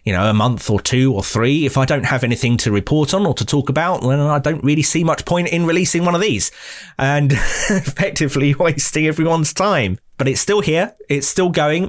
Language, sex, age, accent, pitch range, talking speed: English, male, 30-49, British, 115-150 Hz, 225 wpm